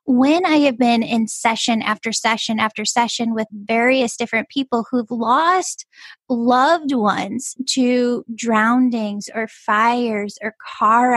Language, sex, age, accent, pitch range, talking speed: English, female, 10-29, American, 225-265 Hz, 130 wpm